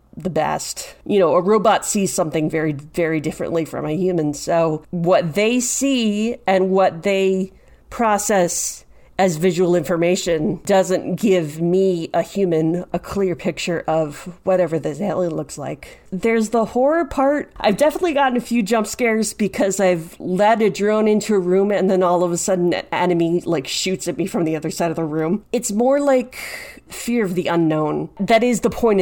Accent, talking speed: American, 180 wpm